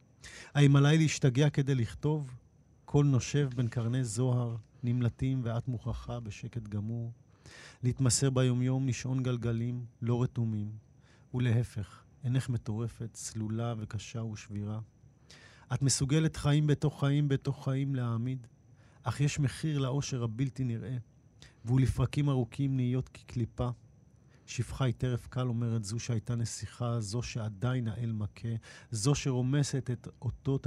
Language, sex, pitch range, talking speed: Hebrew, male, 115-135 Hz, 120 wpm